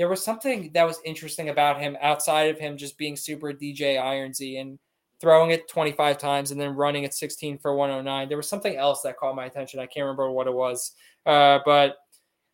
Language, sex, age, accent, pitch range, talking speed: English, male, 20-39, American, 135-160 Hz, 210 wpm